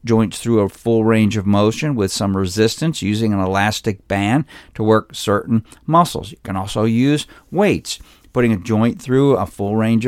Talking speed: 180 wpm